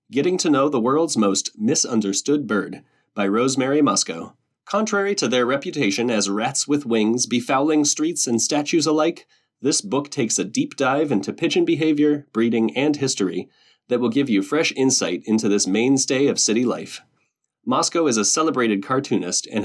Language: English